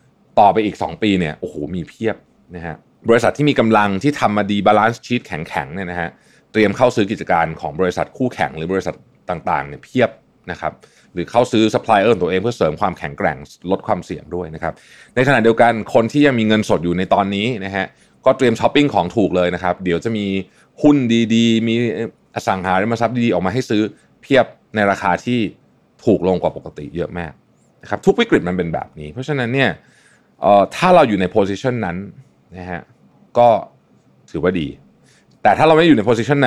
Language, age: Thai, 20-39